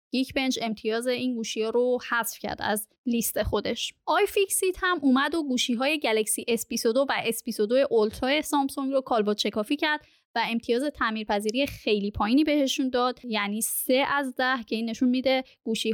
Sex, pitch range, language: female, 220-280 Hz, Persian